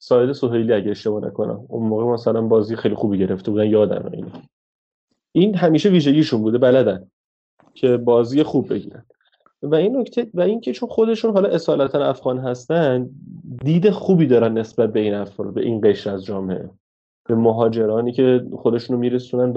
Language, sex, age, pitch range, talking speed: Persian, male, 30-49, 115-135 Hz, 165 wpm